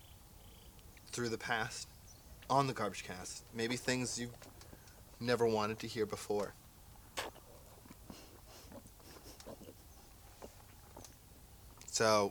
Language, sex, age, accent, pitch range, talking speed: English, male, 20-39, American, 90-110 Hz, 80 wpm